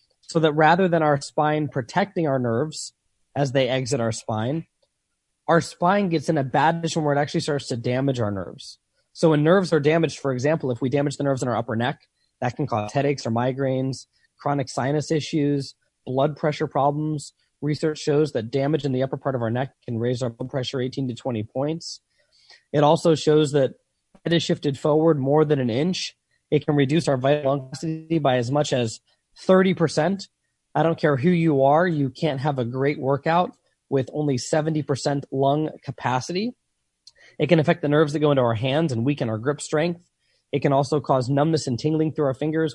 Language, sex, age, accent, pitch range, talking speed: English, male, 20-39, American, 130-155 Hz, 195 wpm